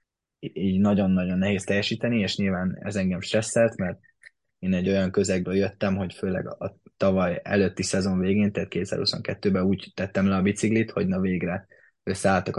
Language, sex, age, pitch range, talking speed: Hungarian, male, 20-39, 95-105 Hz, 155 wpm